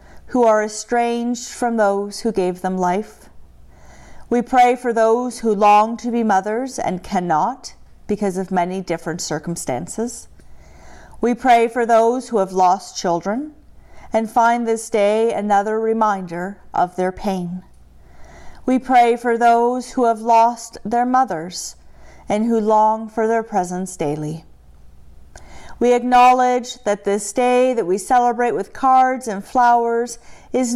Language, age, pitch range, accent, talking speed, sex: English, 40-59, 185-245 Hz, American, 140 wpm, female